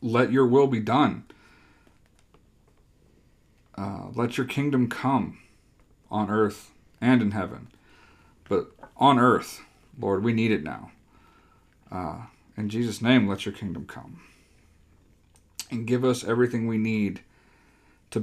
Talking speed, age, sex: 125 wpm, 40-59, male